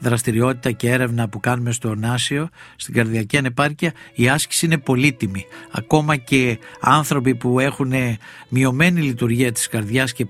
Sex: male